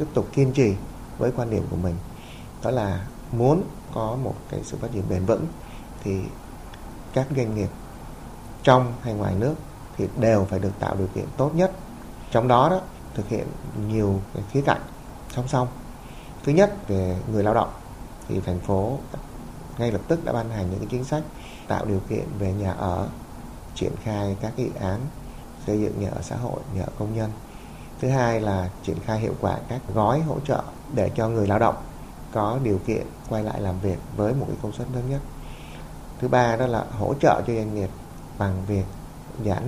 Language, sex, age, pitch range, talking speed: Vietnamese, male, 20-39, 100-125 Hz, 200 wpm